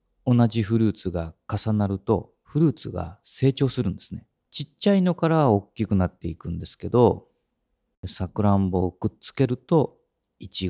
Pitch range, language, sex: 95-130 Hz, Japanese, male